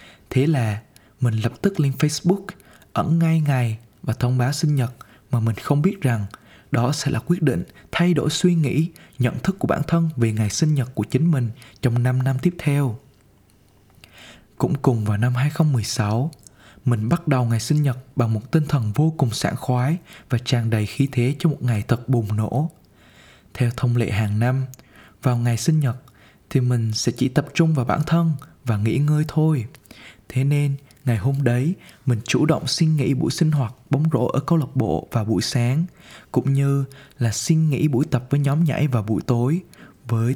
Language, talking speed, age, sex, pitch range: Vietnamese, 200 wpm, 20-39, male, 115-150 Hz